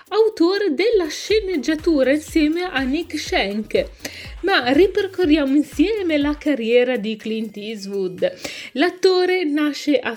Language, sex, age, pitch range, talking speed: Italian, female, 30-49, 245-320 Hz, 105 wpm